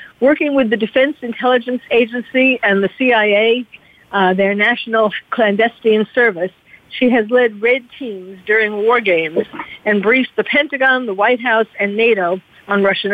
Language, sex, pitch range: English, female, 195-250 Hz